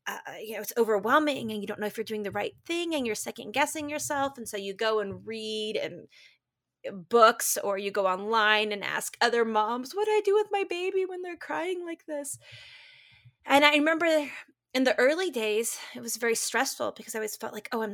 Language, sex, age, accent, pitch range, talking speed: English, female, 20-39, American, 205-280 Hz, 220 wpm